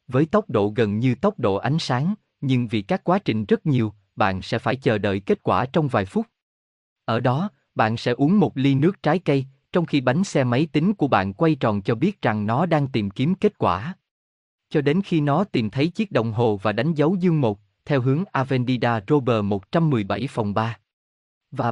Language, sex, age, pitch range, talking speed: Vietnamese, male, 20-39, 110-160 Hz, 215 wpm